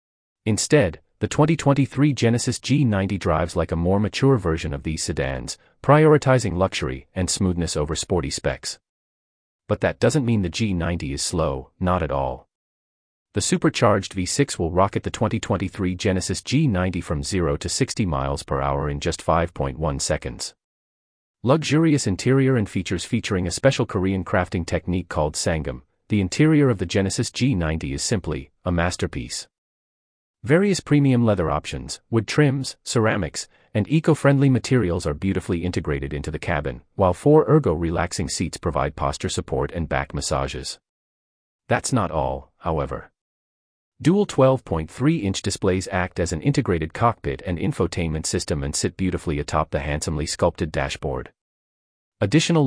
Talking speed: 140 wpm